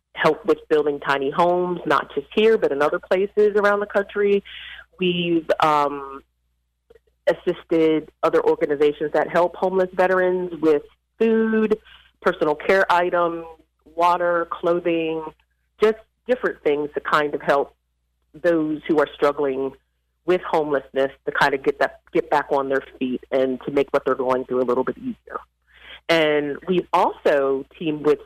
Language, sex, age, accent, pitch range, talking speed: English, female, 30-49, American, 145-195 Hz, 145 wpm